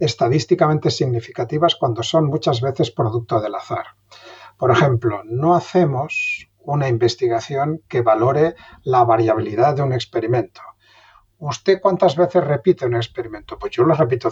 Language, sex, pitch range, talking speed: Spanish, male, 120-175 Hz, 135 wpm